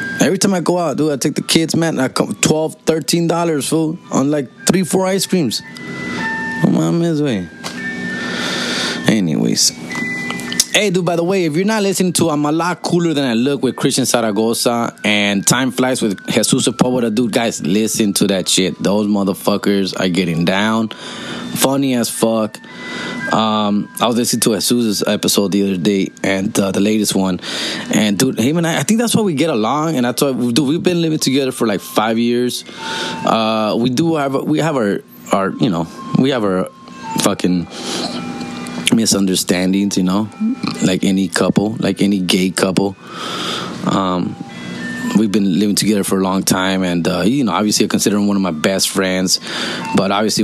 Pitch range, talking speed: 95-155 Hz, 185 wpm